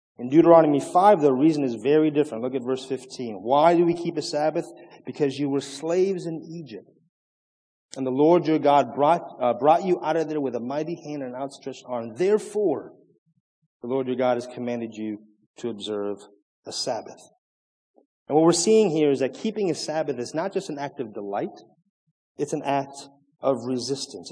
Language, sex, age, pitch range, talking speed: English, male, 30-49, 135-170 Hz, 190 wpm